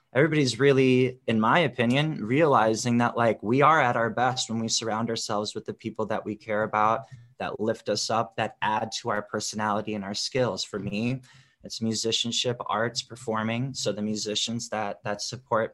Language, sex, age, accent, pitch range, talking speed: English, male, 20-39, American, 105-130 Hz, 185 wpm